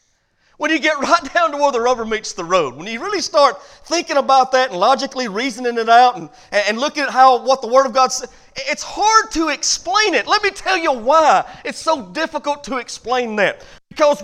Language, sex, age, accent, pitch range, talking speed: English, male, 40-59, American, 235-315 Hz, 220 wpm